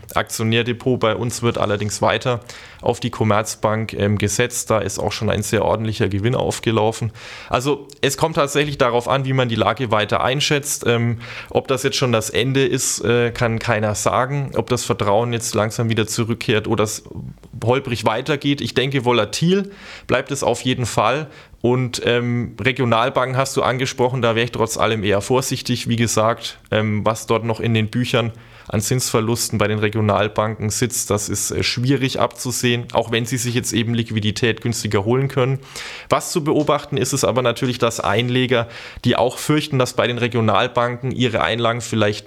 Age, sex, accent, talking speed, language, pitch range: 20-39, male, German, 175 wpm, German, 110-130 Hz